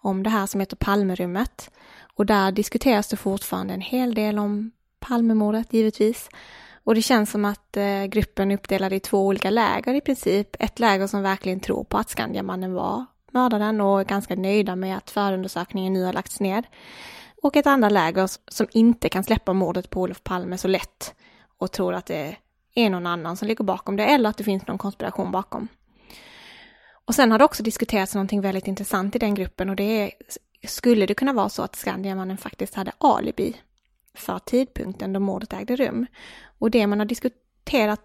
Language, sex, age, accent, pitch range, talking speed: English, female, 20-39, Swedish, 195-230 Hz, 190 wpm